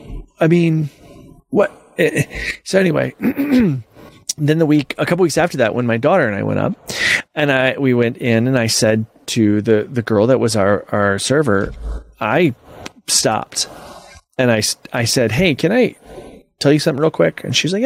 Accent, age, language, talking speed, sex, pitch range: American, 30-49, English, 180 wpm, male, 115-155 Hz